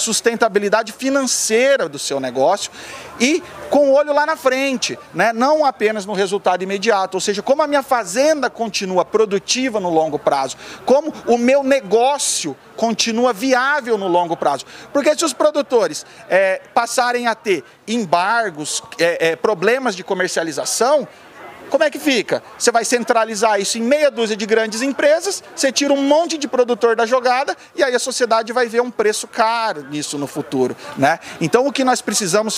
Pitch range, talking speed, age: 205-265 Hz, 165 wpm, 40-59